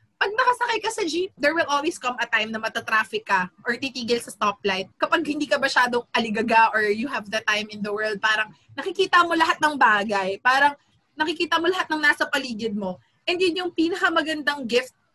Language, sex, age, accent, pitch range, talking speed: Filipino, female, 20-39, native, 220-290 Hz, 195 wpm